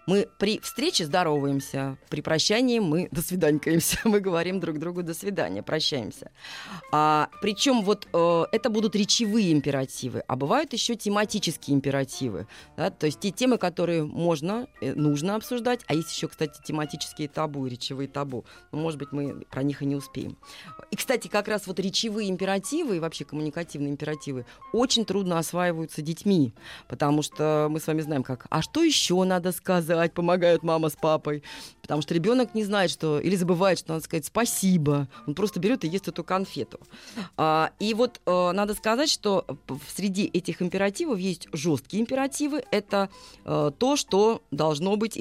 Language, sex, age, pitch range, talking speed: Russian, female, 30-49, 150-205 Hz, 155 wpm